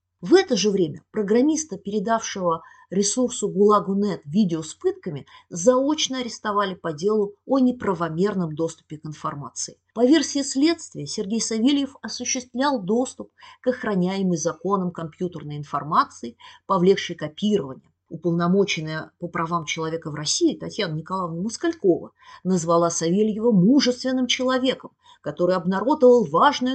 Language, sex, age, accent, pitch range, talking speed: Russian, female, 30-49, native, 175-260 Hz, 110 wpm